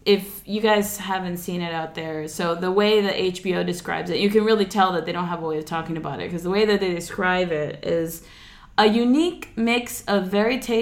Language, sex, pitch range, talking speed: English, female, 175-215 Hz, 235 wpm